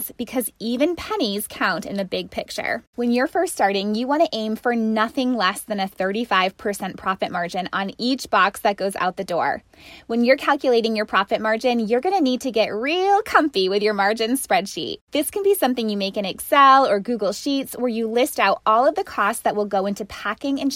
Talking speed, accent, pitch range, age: 215 wpm, American, 200-260 Hz, 20-39